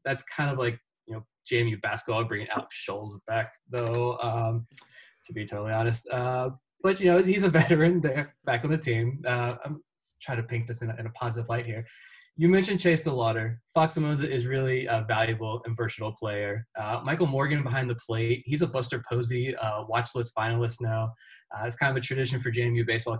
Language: English